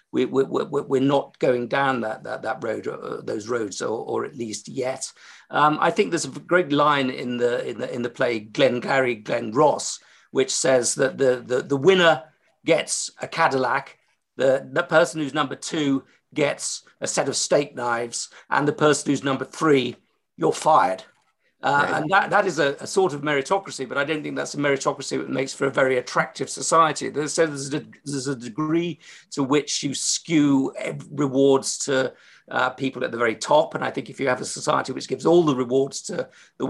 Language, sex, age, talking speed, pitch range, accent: English, male, 50-69, 200 wpm, 130-155 Hz, British